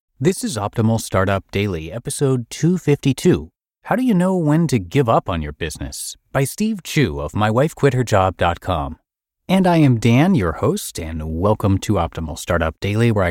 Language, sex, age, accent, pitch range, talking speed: English, male, 30-49, American, 90-135 Hz, 160 wpm